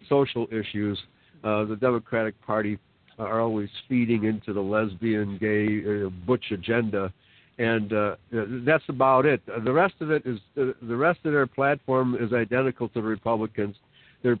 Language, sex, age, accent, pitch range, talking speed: English, male, 60-79, American, 110-140 Hz, 160 wpm